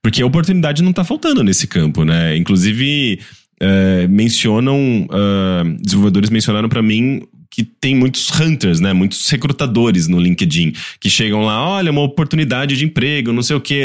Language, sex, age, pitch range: English, male, 20-39, 100-150 Hz